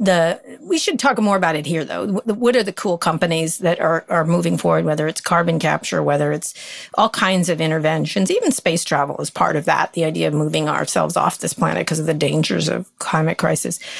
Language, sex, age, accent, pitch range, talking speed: English, female, 40-59, American, 155-190 Hz, 215 wpm